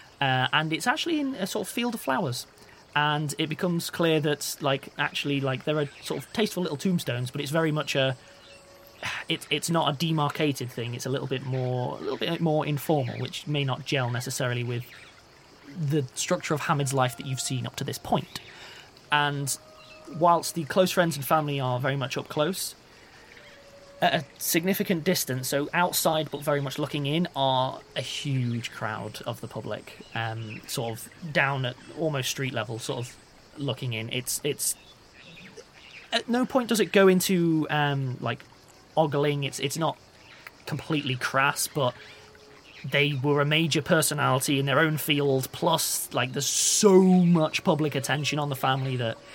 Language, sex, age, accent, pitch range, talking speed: English, male, 20-39, British, 130-160 Hz, 175 wpm